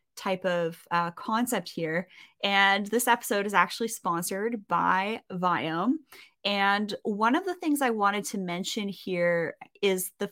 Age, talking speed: 20-39, 145 wpm